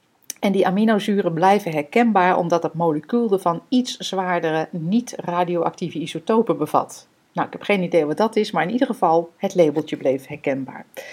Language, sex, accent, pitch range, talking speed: Dutch, female, Dutch, 160-210 Hz, 160 wpm